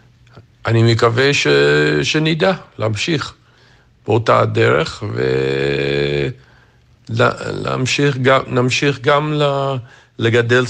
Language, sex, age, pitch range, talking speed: Hebrew, male, 50-69, 110-125 Hz, 65 wpm